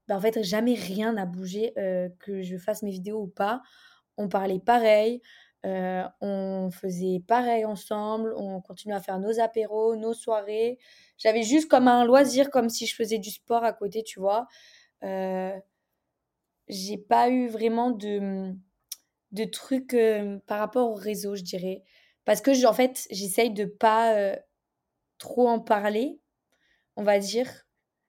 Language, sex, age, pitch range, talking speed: French, female, 20-39, 195-230 Hz, 160 wpm